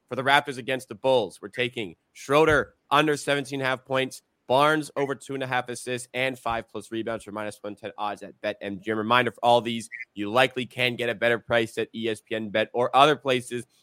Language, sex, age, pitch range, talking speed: English, male, 30-49, 115-135 Hz, 200 wpm